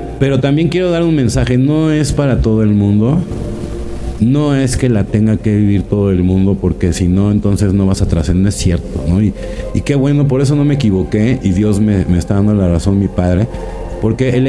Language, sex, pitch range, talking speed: Spanish, male, 95-125 Hz, 225 wpm